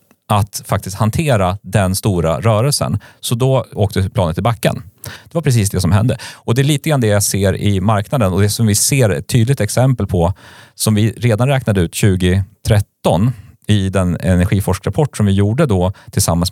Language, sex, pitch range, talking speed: Swedish, male, 95-120 Hz, 185 wpm